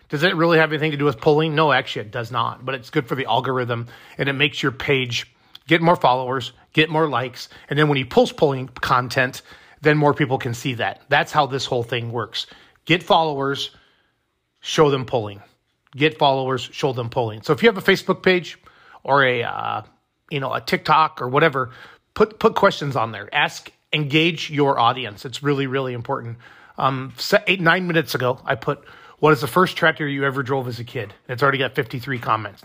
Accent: American